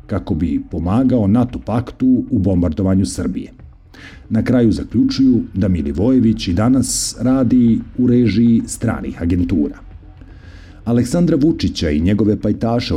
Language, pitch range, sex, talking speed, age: Croatian, 90-115 Hz, male, 115 wpm, 50-69